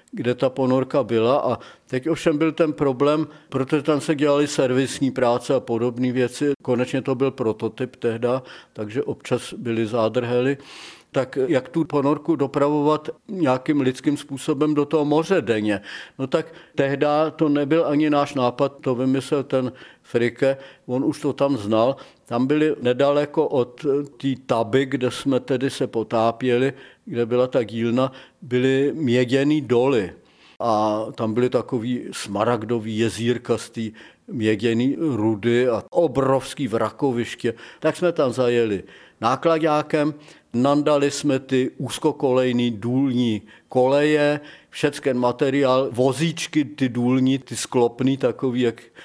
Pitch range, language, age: 125-145 Hz, Czech, 50-69